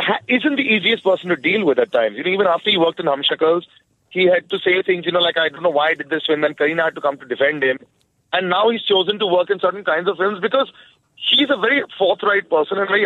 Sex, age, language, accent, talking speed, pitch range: male, 30-49, English, Indian, 275 wpm, 165-225 Hz